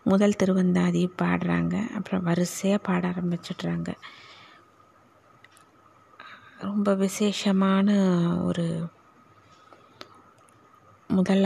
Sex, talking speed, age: female, 60 wpm, 20-39